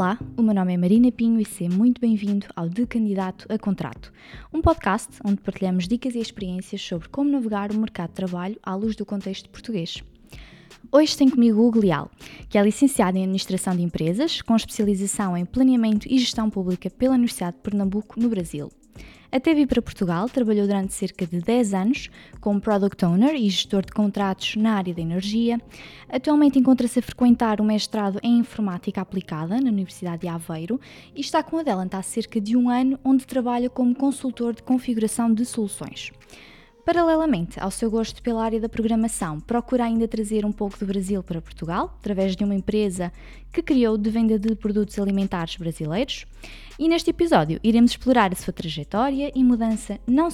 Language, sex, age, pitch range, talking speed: Portuguese, female, 20-39, 195-245 Hz, 180 wpm